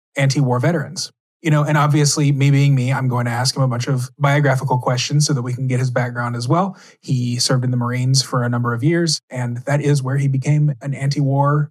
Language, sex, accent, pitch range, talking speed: English, male, American, 130-160 Hz, 235 wpm